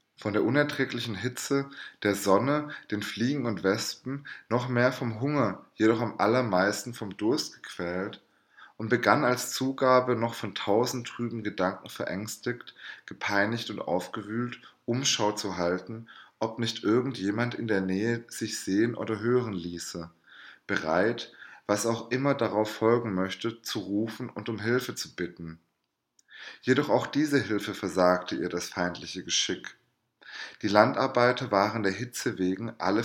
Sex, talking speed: male, 140 wpm